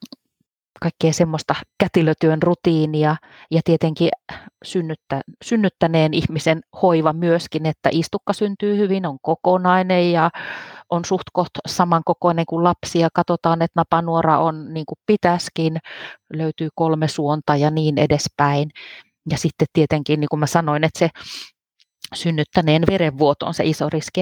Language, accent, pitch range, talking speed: Finnish, native, 155-180 Hz, 130 wpm